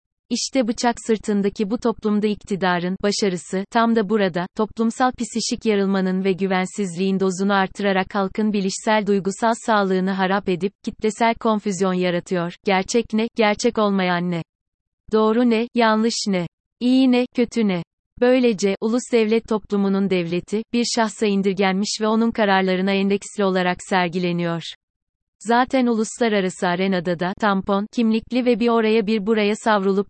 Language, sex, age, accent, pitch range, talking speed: Turkish, female, 30-49, native, 190-225 Hz, 130 wpm